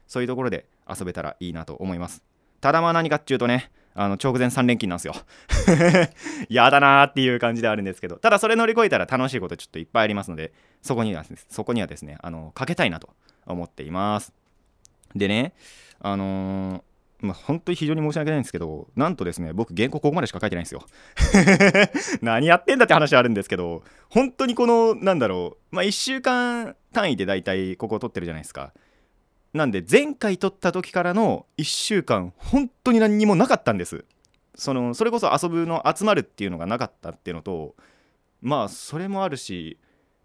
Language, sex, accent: Japanese, male, native